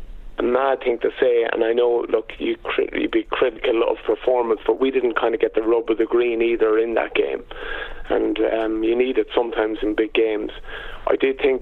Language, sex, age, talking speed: English, male, 30-49, 205 wpm